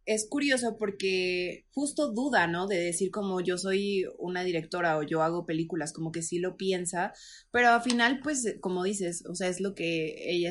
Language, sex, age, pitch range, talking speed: Spanish, female, 20-39, 170-210 Hz, 195 wpm